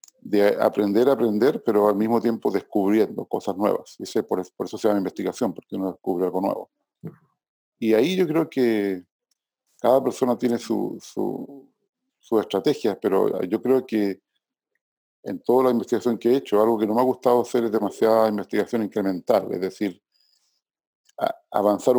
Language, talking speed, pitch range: Spanish, 160 wpm, 100-120 Hz